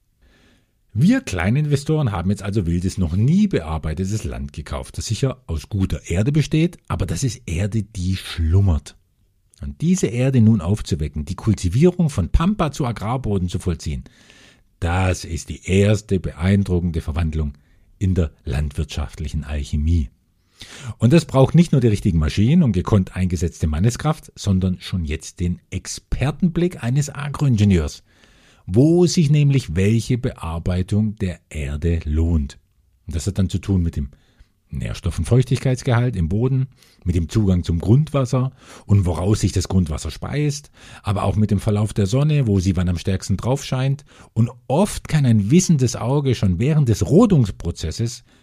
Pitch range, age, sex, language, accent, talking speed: 85-130 Hz, 50-69, male, German, German, 150 wpm